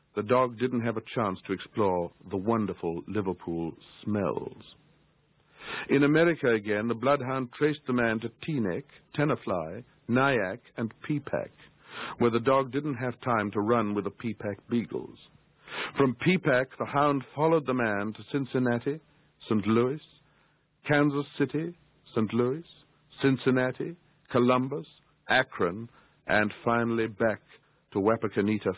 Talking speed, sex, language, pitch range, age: 125 wpm, male, English, 115-145 Hz, 60-79